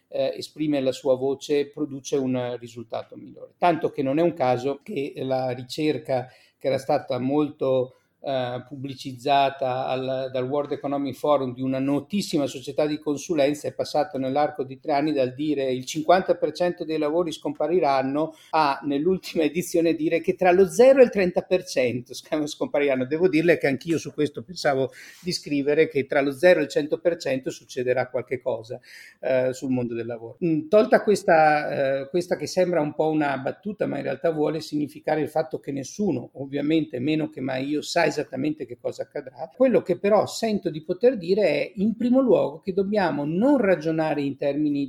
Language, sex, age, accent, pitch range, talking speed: Italian, male, 50-69, native, 135-180 Hz, 175 wpm